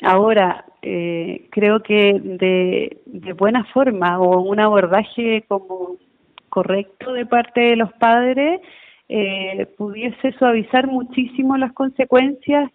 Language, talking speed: Spanish, 115 wpm